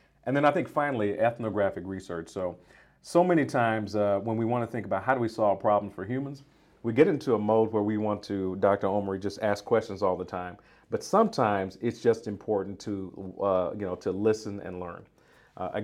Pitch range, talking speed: 100-120 Hz, 215 wpm